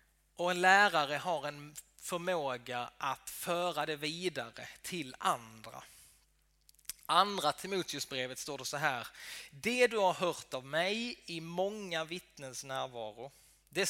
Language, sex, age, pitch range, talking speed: Swedish, male, 20-39, 145-190 Hz, 130 wpm